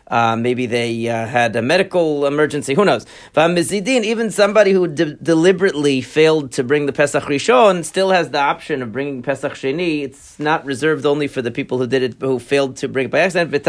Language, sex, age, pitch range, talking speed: English, male, 40-59, 130-175 Hz, 205 wpm